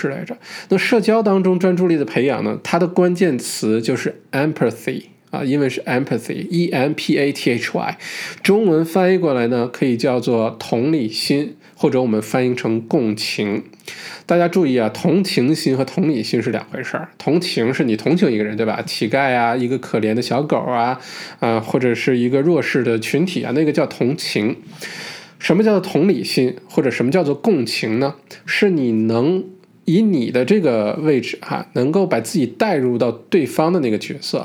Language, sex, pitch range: Chinese, male, 115-170 Hz